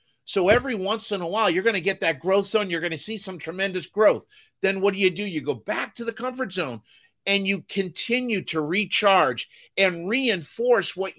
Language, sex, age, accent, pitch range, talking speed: English, male, 50-69, American, 155-195 Hz, 215 wpm